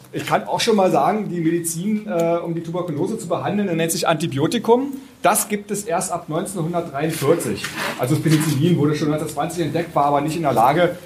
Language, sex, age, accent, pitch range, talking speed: German, male, 40-59, German, 155-185 Hz, 195 wpm